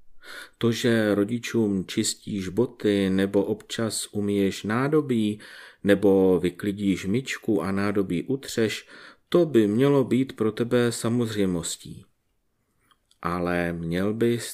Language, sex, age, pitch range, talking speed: Czech, male, 40-59, 100-125 Hz, 105 wpm